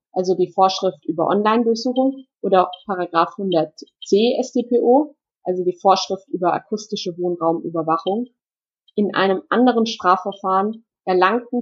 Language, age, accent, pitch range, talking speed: German, 20-39, German, 185-230 Hz, 105 wpm